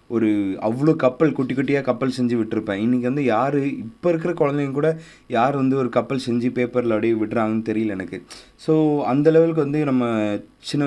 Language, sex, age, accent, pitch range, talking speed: Tamil, male, 20-39, native, 105-135 Hz, 170 wpm